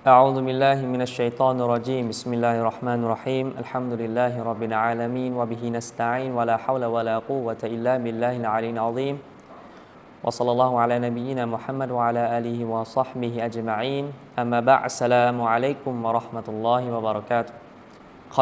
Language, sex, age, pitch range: Thai, male, 20-39, 110-125 Hz